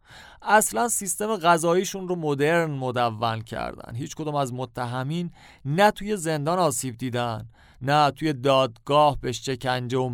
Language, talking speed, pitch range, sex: Persian, 125 wpm, 125-165 Hz, male